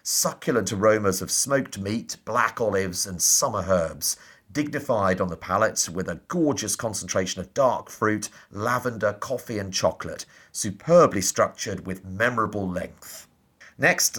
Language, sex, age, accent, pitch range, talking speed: English, male, 40-59, British, 95-120 Hz, 130 wpm